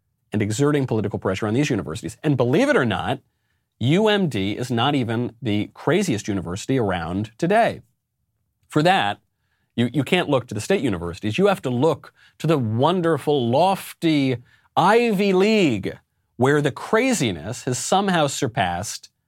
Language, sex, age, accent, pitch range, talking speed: English, male, 40-59, American, 95-130 Hz, 145 wpm